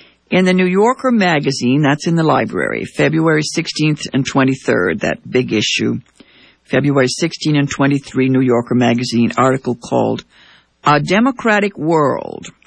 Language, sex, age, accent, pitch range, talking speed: English, female, 60-79, American, 135-210 Hz, 135 wpm